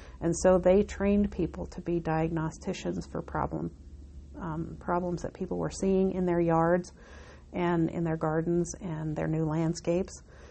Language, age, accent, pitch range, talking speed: English, 50-69, American, 155-180 Hz, 155 wpm